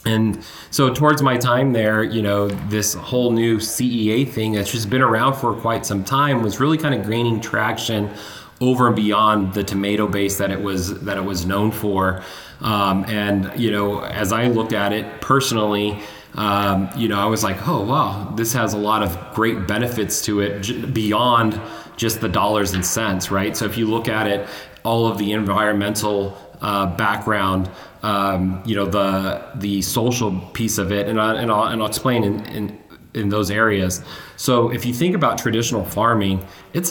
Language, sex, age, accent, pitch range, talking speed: English, male, 30-49, American, 100-115 Hz, 190 wpm